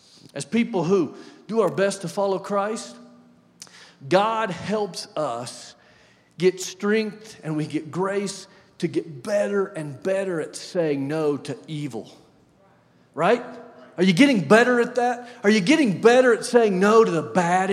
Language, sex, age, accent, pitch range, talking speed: English, male, 40-59, American, 135-200 Hz, 150 wpm